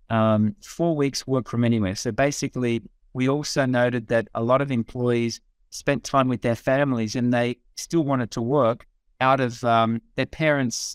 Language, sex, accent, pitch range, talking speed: English, male, Australian, 115-135 Hz, 175 wpm